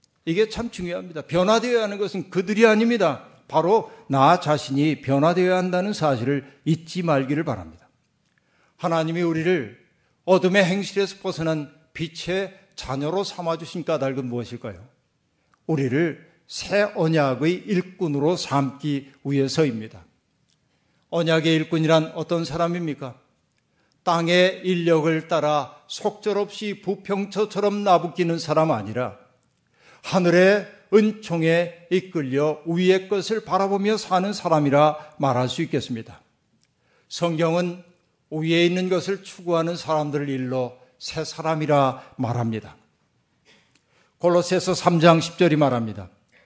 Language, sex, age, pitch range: Korean, male, 50-69, 145-185 Hz